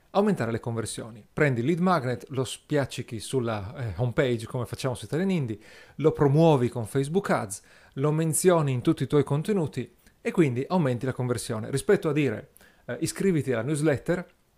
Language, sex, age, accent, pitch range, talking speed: Italian, male, 40-59, native, 120-155 Hz, 170 wpm